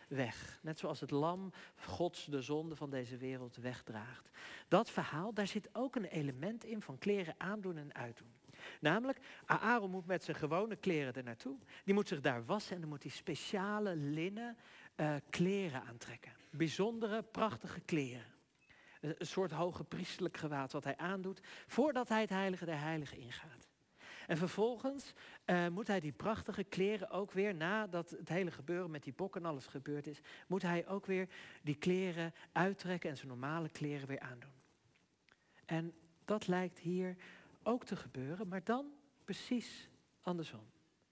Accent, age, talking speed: Dutch, 50-69, 165 wpm